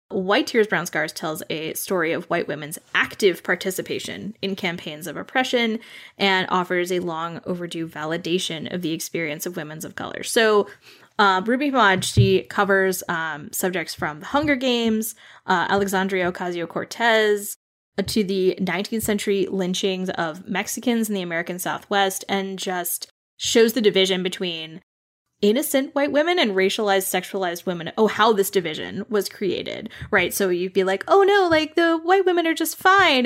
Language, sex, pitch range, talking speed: English, female, 180-225 Hz, 160 wpm